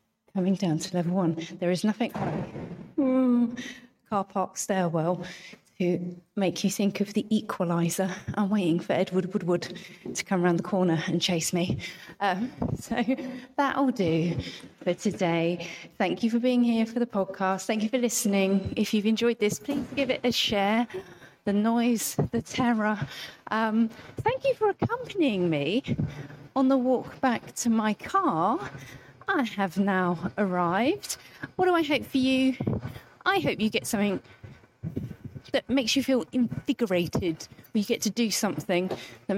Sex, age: female, 30-49